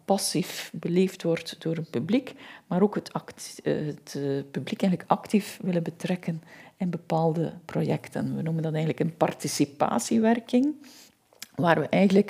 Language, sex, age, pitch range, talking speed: Dutch, female, 50-69, 165-205 Hz, 135 wpm